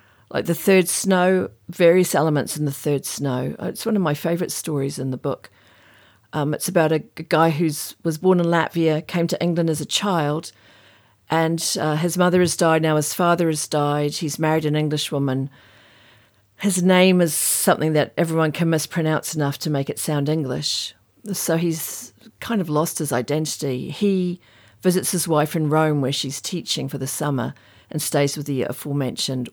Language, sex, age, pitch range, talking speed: English, female, 50-69, 140-175 Hz, 180 wpm